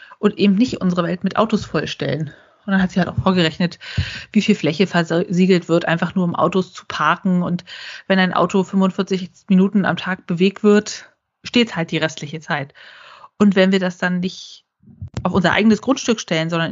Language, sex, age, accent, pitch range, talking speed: German, female, 30-49, German, 175-205 Hz, 190 wpm